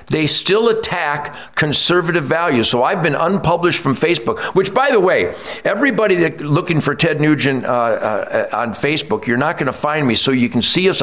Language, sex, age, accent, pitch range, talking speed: English, male, 50-69, American, 135-185 Hz, 185 wpm